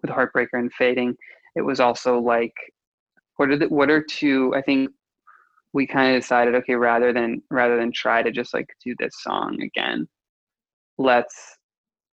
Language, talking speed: English, 170 wpm